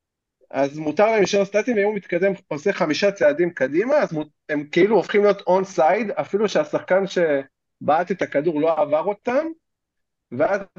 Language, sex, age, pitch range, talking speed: Hebrew, male, 40-59, 135-185 Hz, 150 wpm